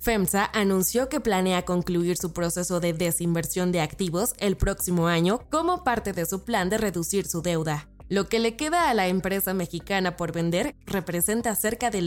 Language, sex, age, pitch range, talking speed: Spanish, female, 20-39, 175-220 Hz, 180 wpm